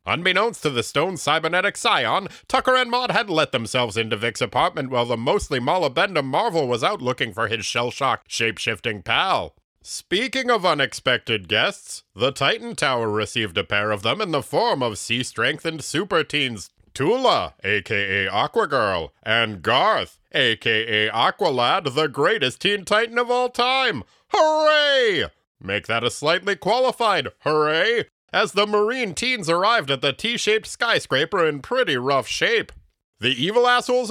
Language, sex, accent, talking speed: English, male, American, 150 wpm